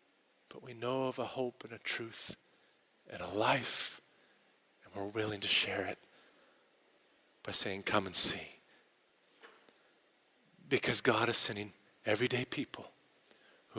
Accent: American